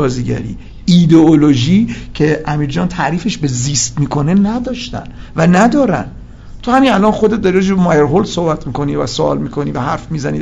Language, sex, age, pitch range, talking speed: Persian, male, 50-69, 150-195 Hz, 155 wpm